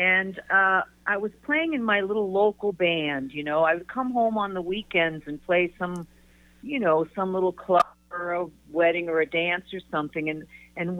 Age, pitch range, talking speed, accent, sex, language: 50-69, 170-220 Hz, 200 wpm, American, female, English